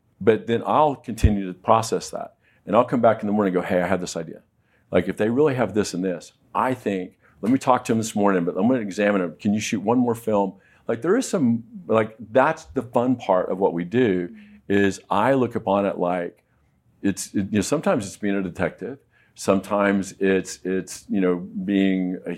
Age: 50-69